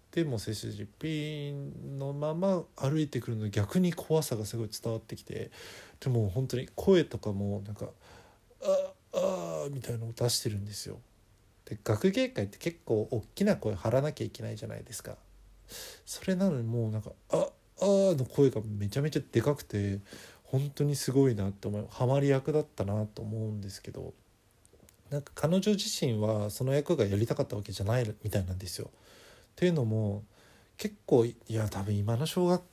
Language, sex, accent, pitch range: Japanese, male, native, 110-145 Hz